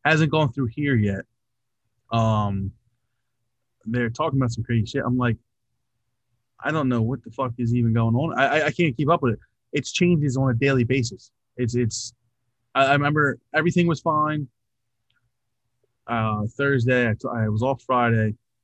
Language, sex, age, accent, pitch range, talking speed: English, male, 20-39, American, 115-135 Hz, 170 wpm